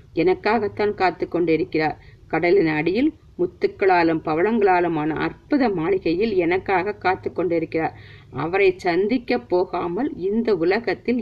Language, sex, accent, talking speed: Tamil, female, native, 90 wpm